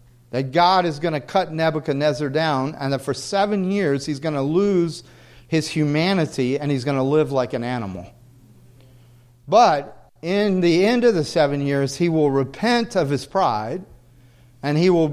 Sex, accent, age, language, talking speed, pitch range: male, American, 40-59, English, 175 wpm, 125-195 Hz